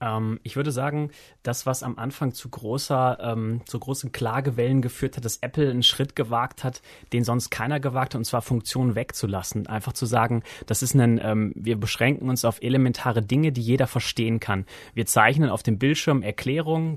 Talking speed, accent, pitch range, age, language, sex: 185 wpm, German, 115-135 Hz, 30-49, German, male